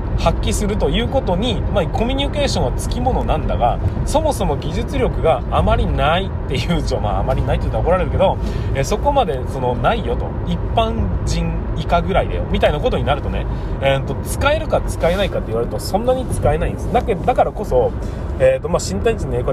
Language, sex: Japanese, male